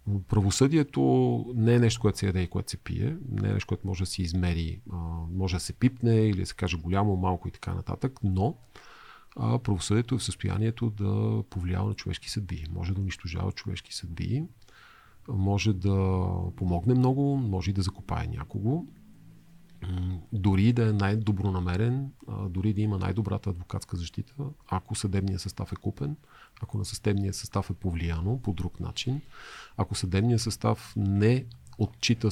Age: 40-59